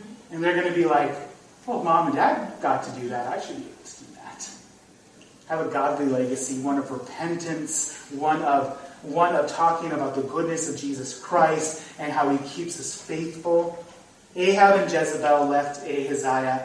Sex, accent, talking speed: male, American, 175 wpm